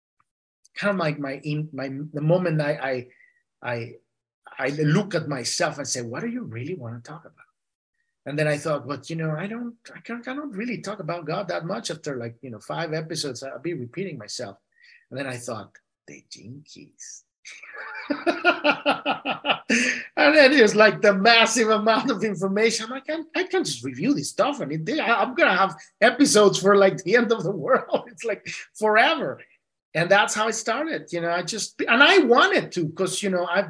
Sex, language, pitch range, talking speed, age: male, English, 145-215 Hz, 200 wpm, 30-49